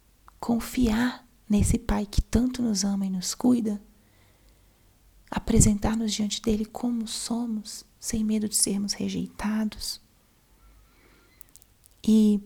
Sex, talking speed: female, 100 wpm